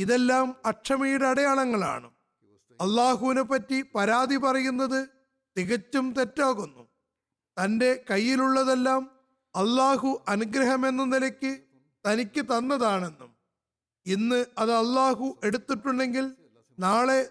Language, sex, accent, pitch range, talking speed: Malayalam, male, native, 200-265 Hz, 75 wpm